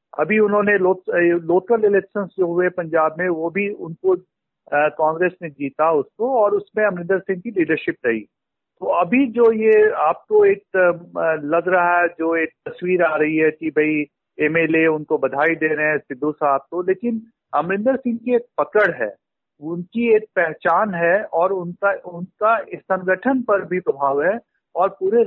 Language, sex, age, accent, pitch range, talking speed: Hindi, male, 50-69, native, 165-205 Hz, 170 wpm